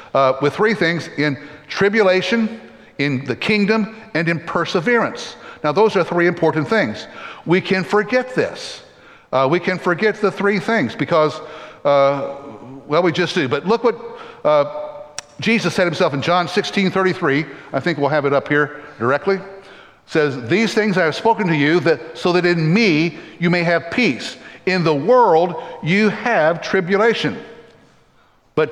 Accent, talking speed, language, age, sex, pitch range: American, 165 wpm, English, 60-79, male, 160-205 Hz